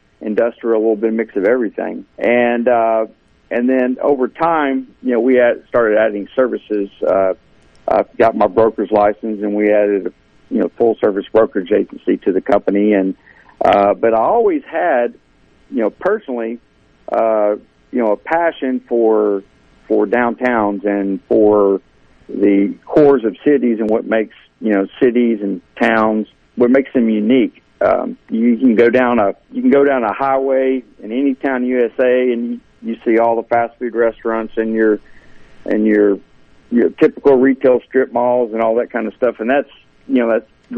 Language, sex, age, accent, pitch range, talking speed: English, male, 50-69, American, 105-130 Hz, 175 wpm